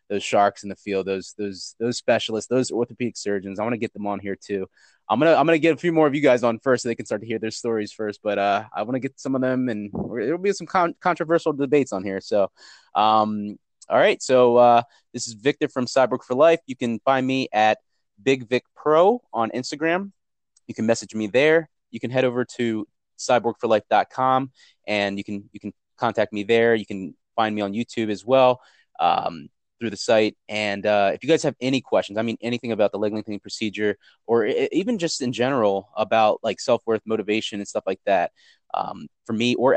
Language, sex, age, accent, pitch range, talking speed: English, male, 20-39, American, 105-130 Hz, 225 wpm